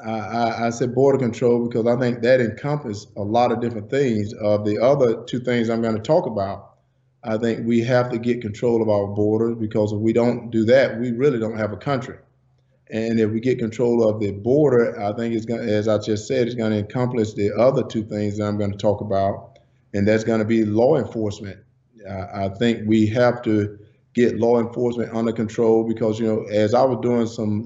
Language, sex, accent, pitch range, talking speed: English, male, American, 110-125 Hz, 225 wpm